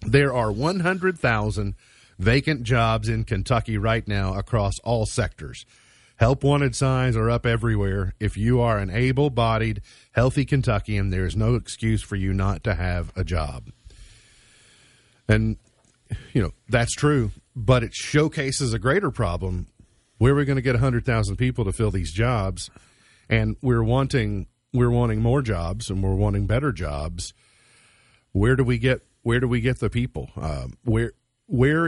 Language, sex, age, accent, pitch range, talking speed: English, male, 50-69, American, 100-125 Hz, 160 wpm